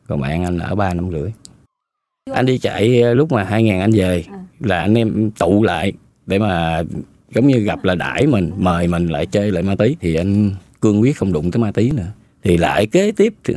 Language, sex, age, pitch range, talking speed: Vietnamese, male, 20-39, 95-135 Hz, 215 wpm